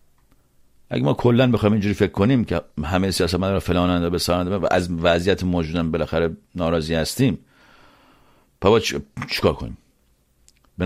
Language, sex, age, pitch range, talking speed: Persian, male, 50-69, 80-105 Hz, 140 wpm